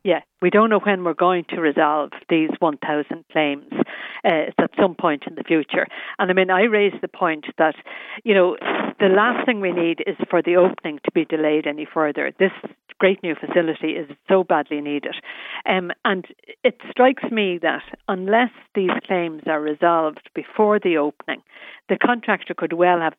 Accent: Irish